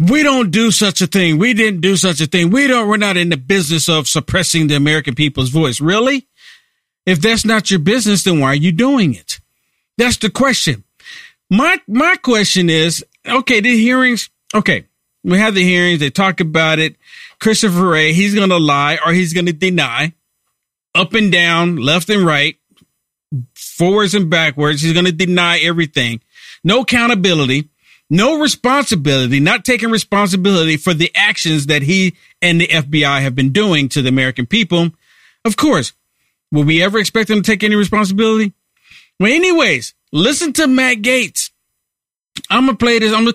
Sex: male